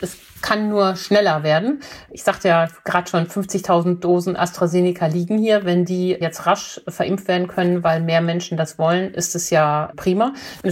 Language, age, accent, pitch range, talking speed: German, 50-69, German, 155-180 Hz, 180 wpm